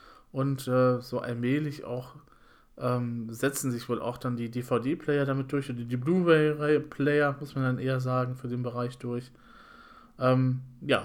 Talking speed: 160 wpm